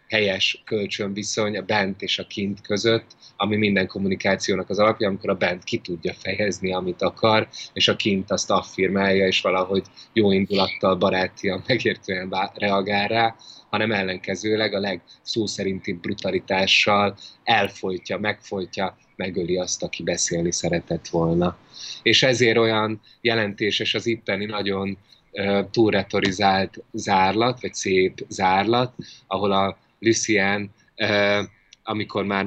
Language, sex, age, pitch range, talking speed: Hungarian, male, 20-39, 95-115 Hz, 120 wpm